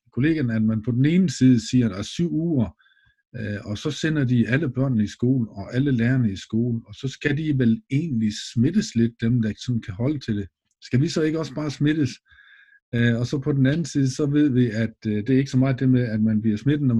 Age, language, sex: 50-69, Danish, male